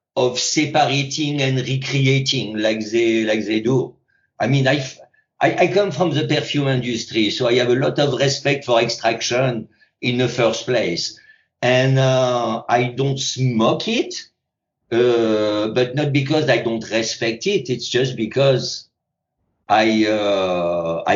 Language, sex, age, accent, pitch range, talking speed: English, male, 50-69, French, 120-155 Hz, 145 wpm